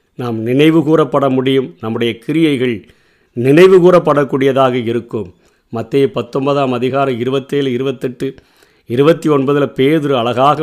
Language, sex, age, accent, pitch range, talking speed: Tamil, male, 50-69, native, 125-150 Hz, 90 wpm